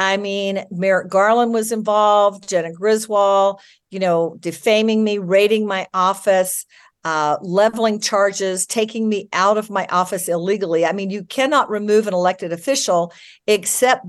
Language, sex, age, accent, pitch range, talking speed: English, female, 50-69, American, 170-210 Hz, 145 wpm